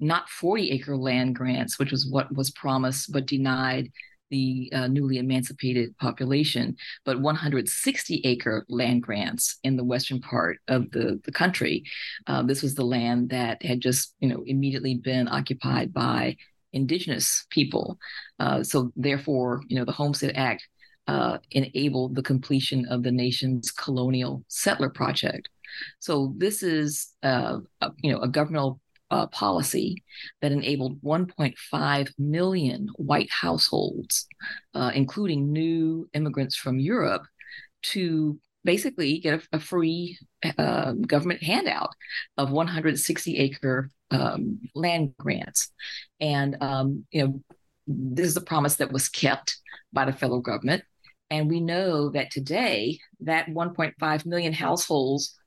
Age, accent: 40-59, American